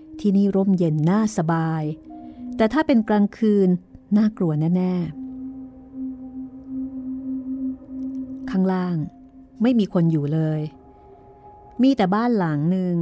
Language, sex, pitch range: Thai, female, 160-255 Hz